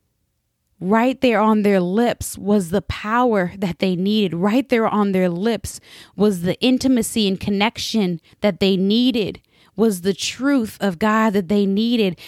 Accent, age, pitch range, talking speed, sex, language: American, 20-39, 205-245 Hz, 155 wpm, female, English